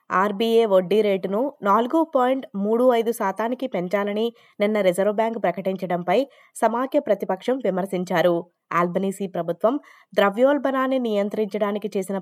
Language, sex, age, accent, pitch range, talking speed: Telugu, female, 20-39, native, 190-240 Hz, 105 wpm